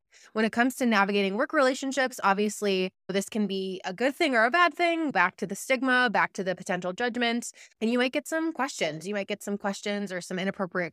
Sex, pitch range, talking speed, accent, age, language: female, 185-240 Hz, 225 wpm, American, 20-39, English